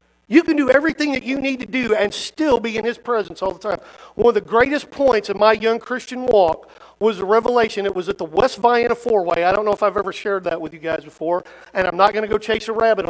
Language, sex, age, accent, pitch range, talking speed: English, male, 50-69, American, 180-225 Hz, 270 wpm